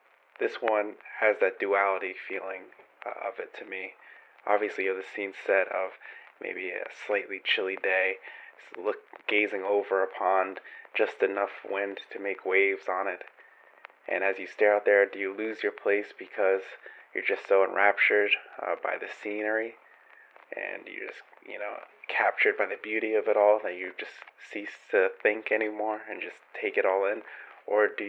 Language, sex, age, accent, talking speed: English, male, 30-49, American, 175 wpm